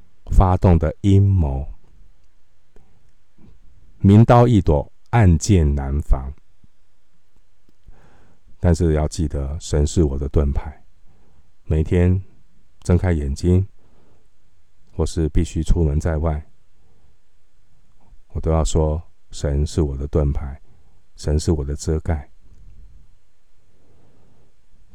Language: Chinese